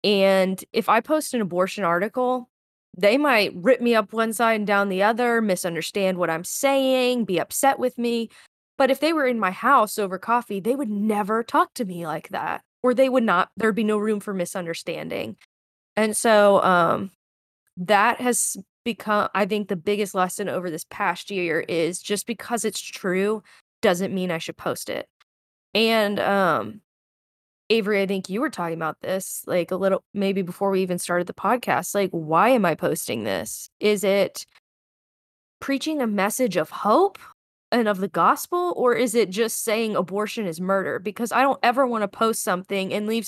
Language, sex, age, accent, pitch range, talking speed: English, female, 20-39, American, 185-230 Hz, 185 wpm